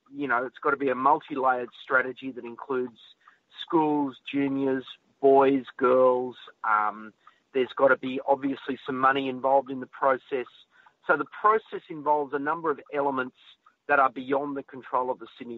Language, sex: English, male